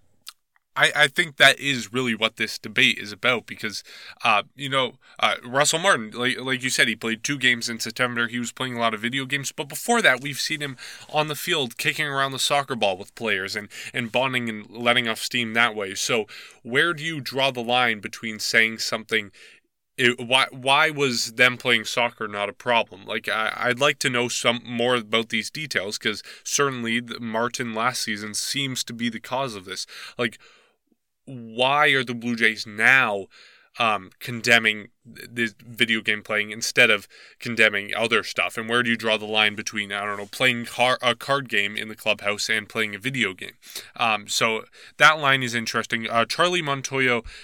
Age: 20-39